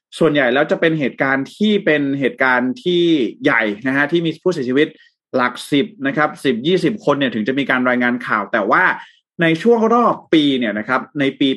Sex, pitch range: male, 120-155 Hz